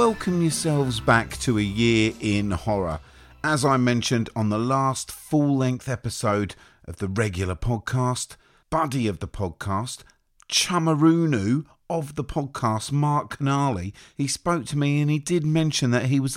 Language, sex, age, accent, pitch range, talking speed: English, male, 40-59, British, 105-145 Hz, 150 wpm